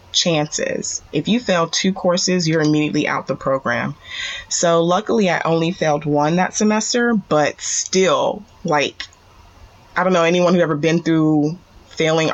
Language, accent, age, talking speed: English, American, 20-39, 150 wpm